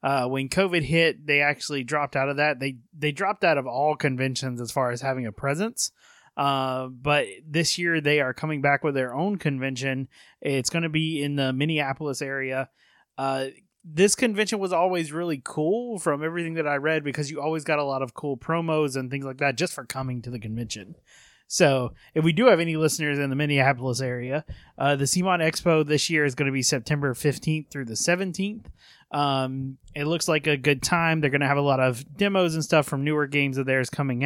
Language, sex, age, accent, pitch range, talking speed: English, male, 20-39, American, 135-160 Hz, 215 wpm